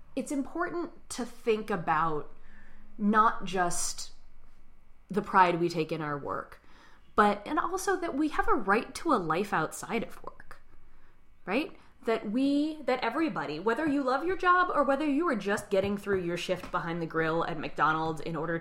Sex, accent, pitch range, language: female, American, 160-220 Hz, English